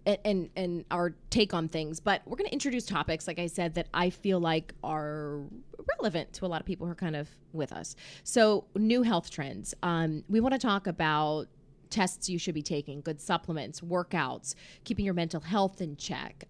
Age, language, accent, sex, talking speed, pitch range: 20-39, English, American, female, 205 wpm, 155-190 Hz